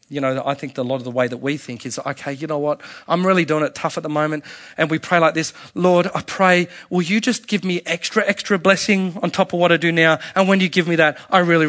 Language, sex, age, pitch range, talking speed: English, male, 30-49, 135-170 Hz, 285 wpm